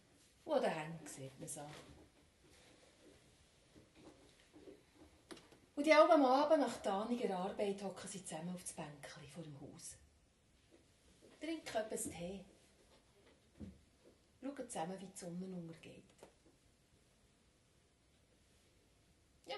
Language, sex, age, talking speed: German, female, 30-49, 100 wpm